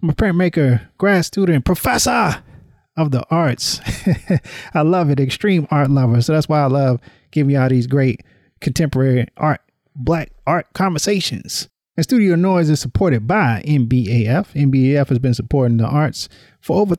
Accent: American